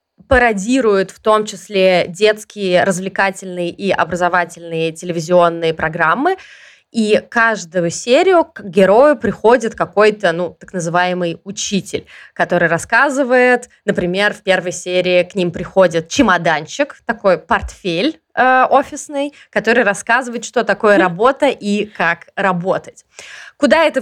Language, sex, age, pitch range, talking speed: Russian, female, 20-39, 185-250 Hz, 105 wpm